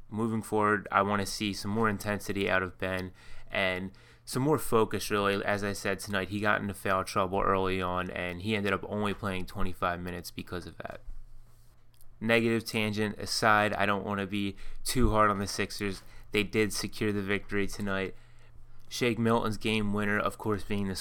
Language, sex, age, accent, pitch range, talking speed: English, male, 20-39, American, 95-110 Hz, 190 wpm